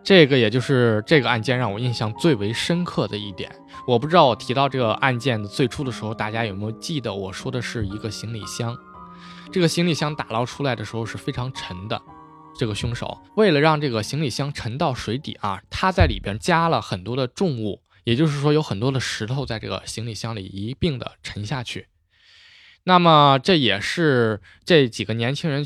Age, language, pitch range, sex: 20-39, Chinese, 105-140 Hz, male